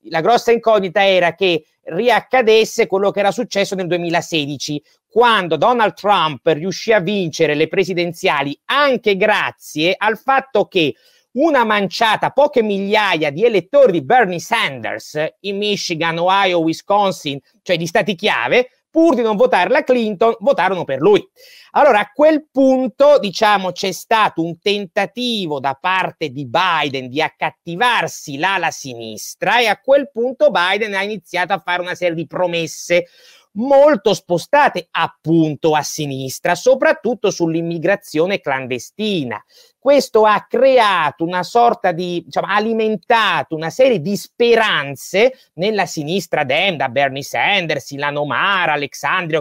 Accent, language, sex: native, Italian, male